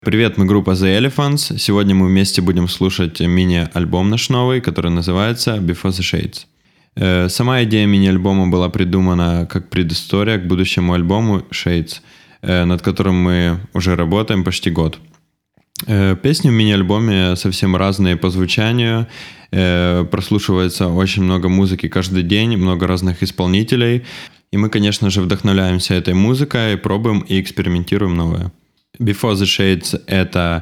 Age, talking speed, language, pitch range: 20-39, 130 wpm, Russian, 90-105 Hz